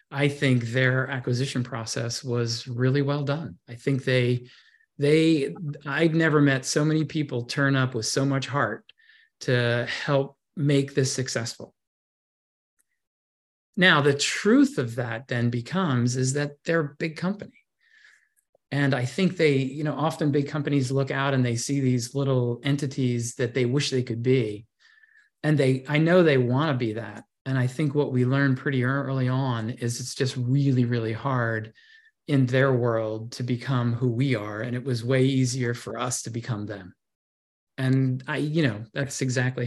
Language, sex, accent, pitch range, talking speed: English, male, American, 125-150 Hz, 170 wpm